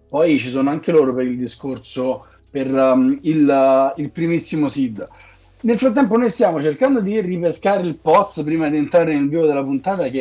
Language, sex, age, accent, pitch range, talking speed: Italian, male, 30-49, native, 150-215 Hz, 190 wpm